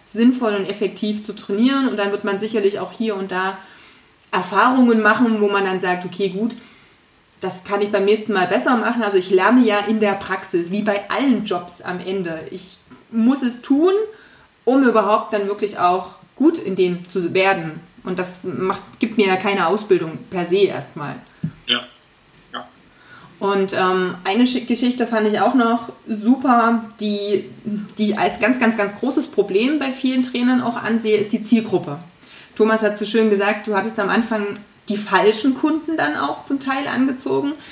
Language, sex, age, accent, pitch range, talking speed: German, female, 30-49, German, 200-245 Hz, 175 wpm